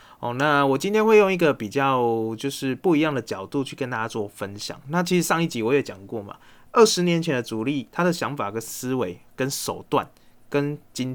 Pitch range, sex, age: 115-155 Hz, male, 20-39